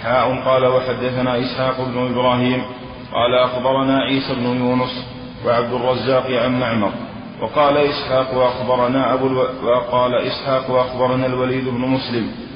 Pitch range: 125-130 Hz